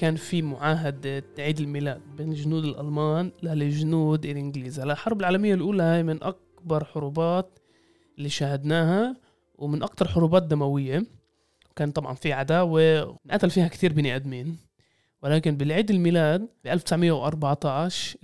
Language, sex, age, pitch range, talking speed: Arabic, male, 20-39, 145-185 Hz, 135 wpm